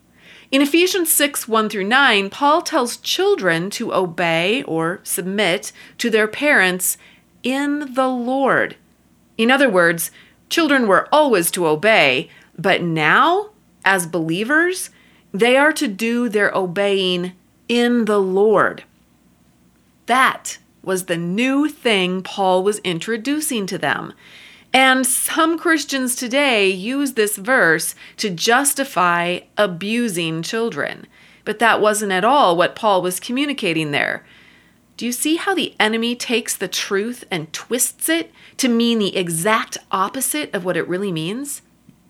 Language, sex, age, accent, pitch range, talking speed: English, female, 30-49, American, 185-265 Hz, 135 wpm